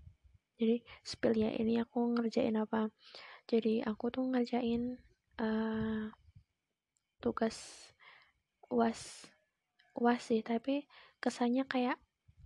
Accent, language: native, Indonesian